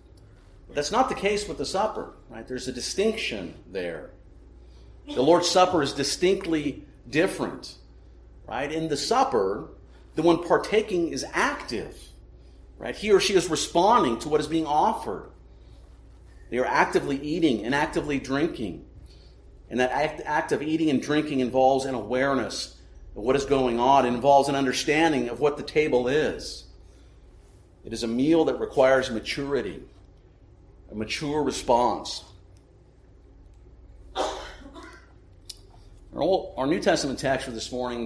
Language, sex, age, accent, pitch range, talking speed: English, male, 50-69, American, 110-150 Hz, 135 wpm